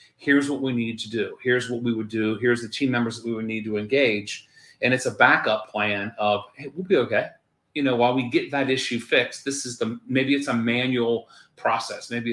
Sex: male